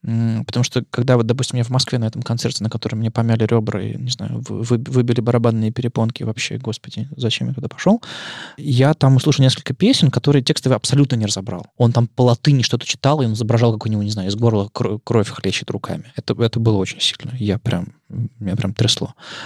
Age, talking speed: 20-39, 205 wpm